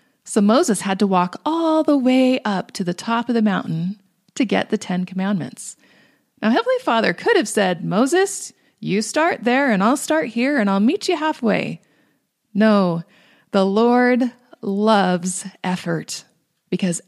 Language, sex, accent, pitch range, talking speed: English, female, American, 205-290 Hz, 160 wpm